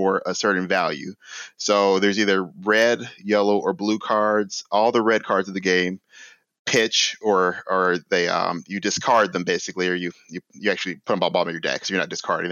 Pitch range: 90-105 Hz